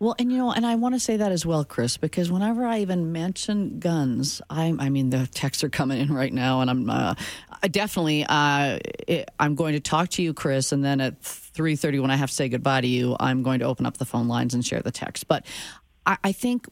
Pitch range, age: 145-205 Hz, 40-59